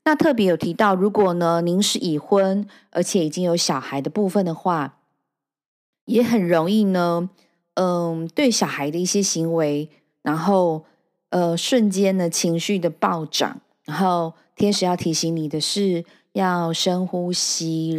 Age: 20-39